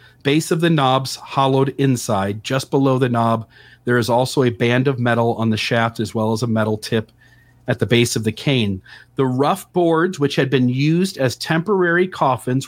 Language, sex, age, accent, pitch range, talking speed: English, male, 40-59, American, 120-150 Hz, 200 wpm